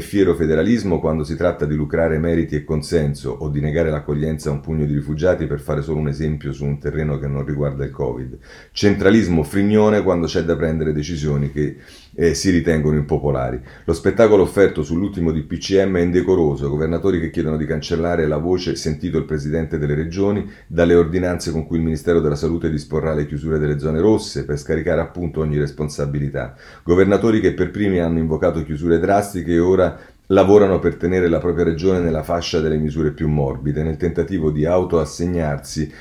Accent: native